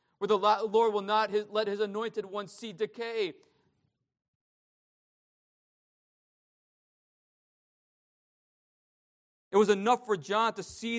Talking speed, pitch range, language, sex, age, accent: 100 wpm, 180-220 Hz, English, male, 40-59, American